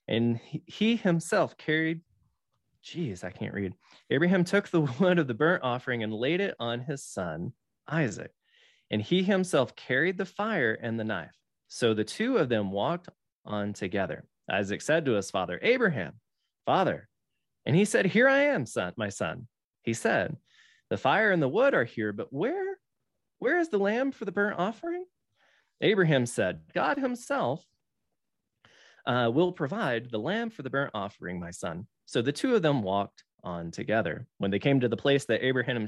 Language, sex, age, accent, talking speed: English, male, 20-39, American, 175 wpm